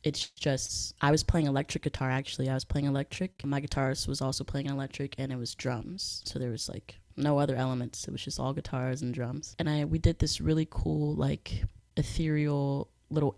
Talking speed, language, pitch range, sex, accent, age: 205 wpm, English, 130-150 Hz, female, American, 20-39